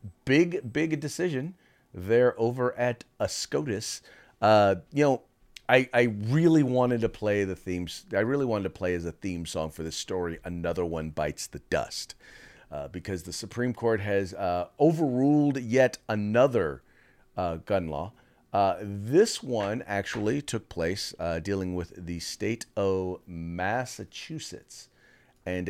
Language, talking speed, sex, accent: English, 145 wpm, male, American